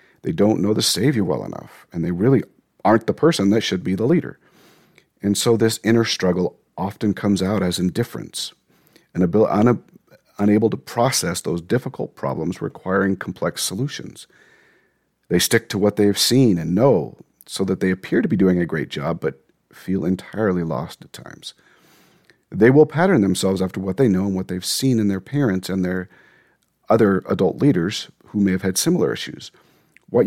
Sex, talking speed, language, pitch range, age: male, 175 wpm, English, 95-110 Hz, 40-59